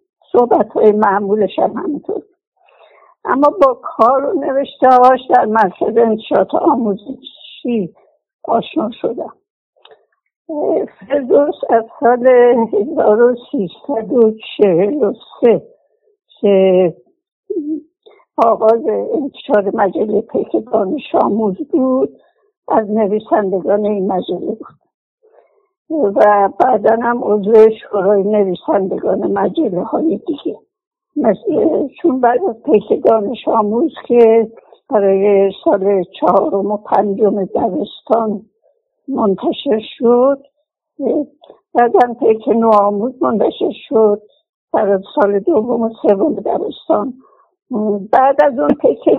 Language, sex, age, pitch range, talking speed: Persian, female, 60-79, 210-320 Hz, 85 wpm